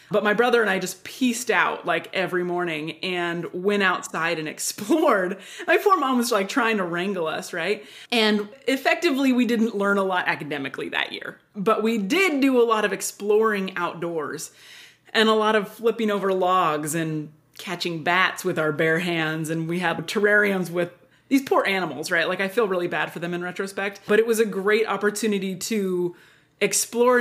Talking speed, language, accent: 185 wpm, English, American